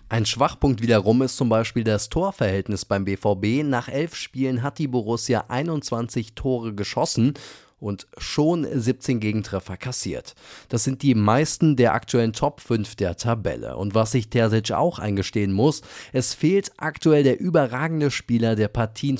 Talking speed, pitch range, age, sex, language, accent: 155 wpm, 105-130 Hz, 30-49, male, German, German